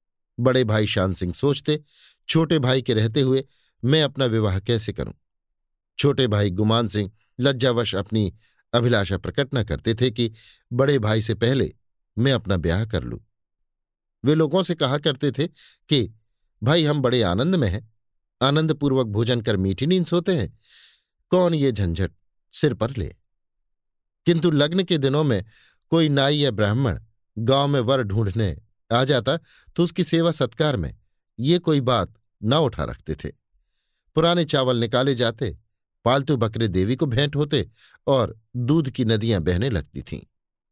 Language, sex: Hindi, male